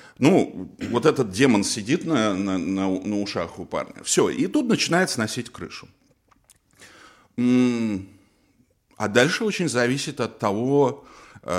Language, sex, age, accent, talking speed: Russian, male, 50-69, native, 120 wpm